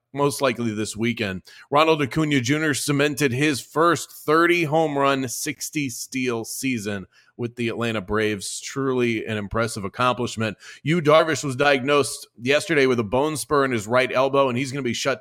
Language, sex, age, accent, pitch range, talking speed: English, male, 30-49, American, 120-150 Hz, 170 wpm